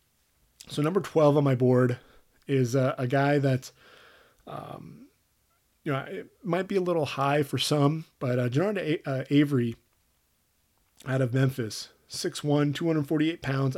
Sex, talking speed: male, 145 wpm